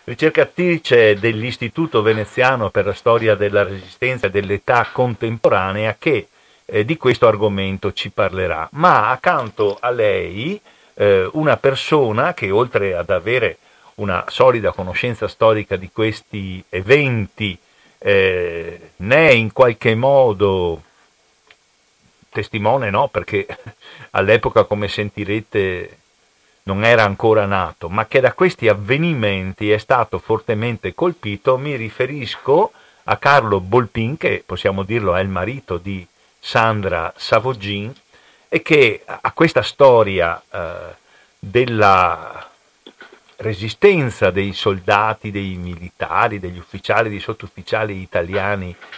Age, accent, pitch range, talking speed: 50-69, native, 100-135 Hz, 110 wpm